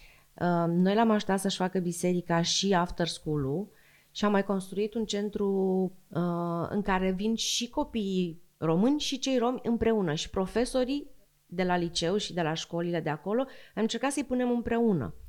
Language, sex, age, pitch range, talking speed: Romanian, female, 30-49, 165-215 Hz, 160 wpm